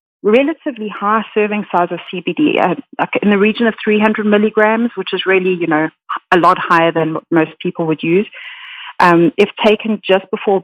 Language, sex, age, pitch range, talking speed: English, female, 40-59, 170-215 Hz, 180 wpm